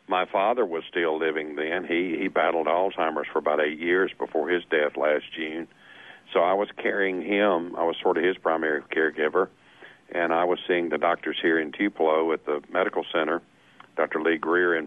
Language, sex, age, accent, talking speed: English, male, 50-69, American, 195 wpm